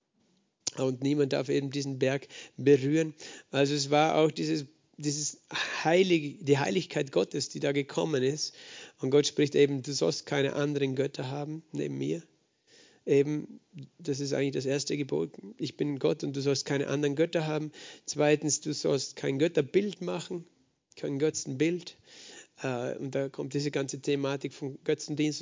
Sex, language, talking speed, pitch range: male, German, 155 wpm, 135-150 Hz